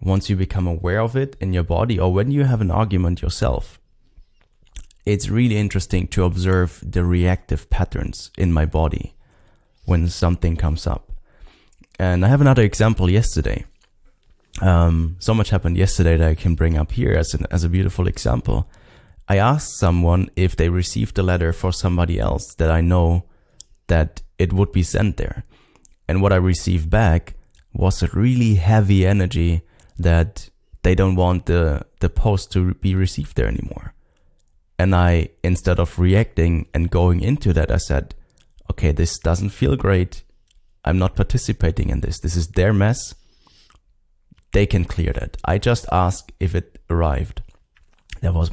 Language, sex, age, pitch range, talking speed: English, male, 30-49, 85-100 Hz, 165 wpm